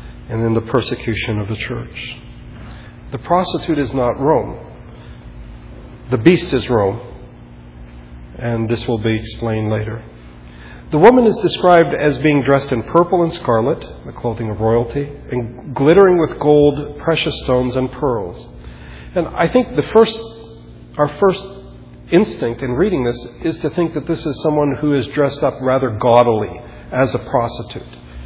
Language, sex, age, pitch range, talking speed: English, male, 40-59, 110-150 Hz, 155 wpm